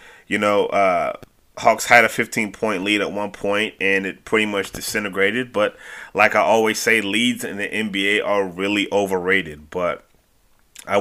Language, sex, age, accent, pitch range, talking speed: English, male, 30-49, American, 100-115 Hz, 165 wpm